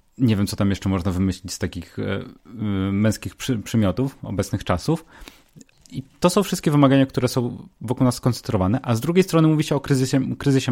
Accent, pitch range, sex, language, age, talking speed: native, 95-120 Hz, male, Polish, 30-49, 175 wpm